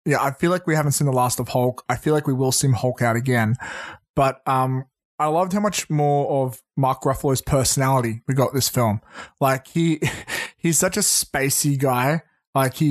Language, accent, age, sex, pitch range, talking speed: English, Australian, 20-39, male, 130-160 Hz, 205 wpm